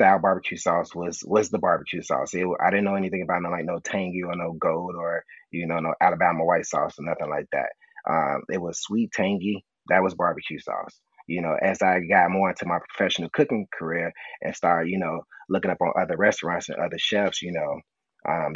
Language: English